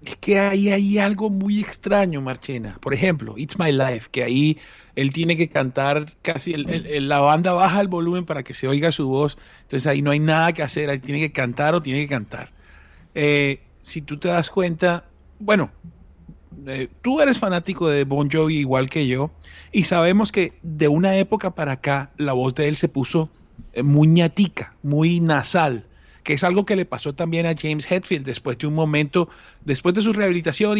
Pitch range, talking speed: 140-195 Hz, 195 wpm